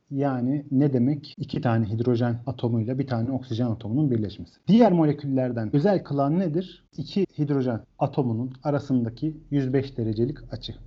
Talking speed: 130 wpm